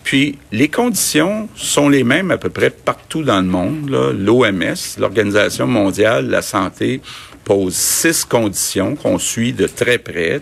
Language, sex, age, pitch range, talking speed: French, male, 50-69, 95-120 Hz, 160 wpm